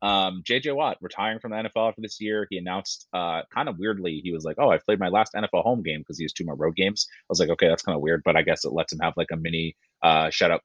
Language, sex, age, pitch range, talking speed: English, male, 30-49, 85-110 Hz, 315 wpm